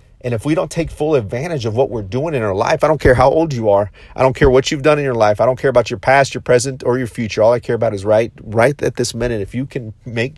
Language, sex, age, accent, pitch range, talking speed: English, male, 40-59, American, 110-135 Hz, 320 wpm